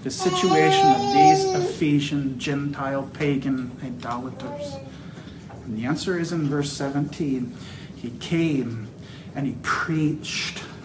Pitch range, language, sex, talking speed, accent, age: 170-265 Hz, English, male, 110 wpm, American, 40-59